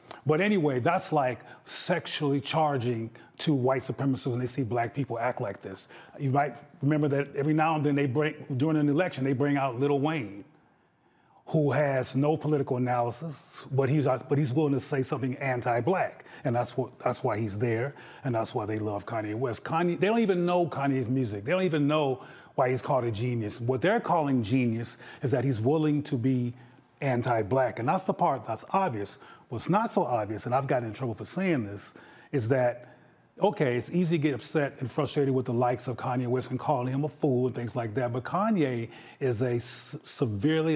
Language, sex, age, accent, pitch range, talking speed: English, male, 30-49, American, 125-150 Hz, 205 wpm